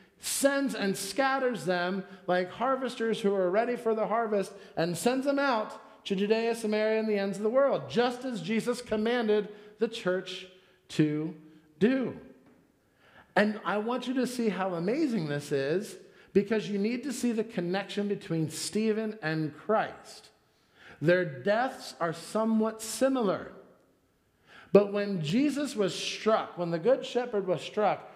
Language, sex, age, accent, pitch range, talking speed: English, male, 50-69, American, 170-225 Hz, 150 wpm